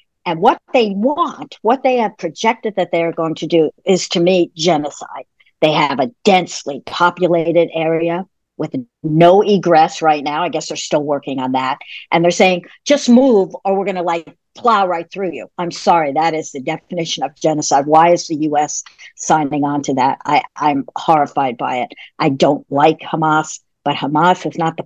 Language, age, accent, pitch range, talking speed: English, 60-79, American, 150-180 Hz, 190 wpm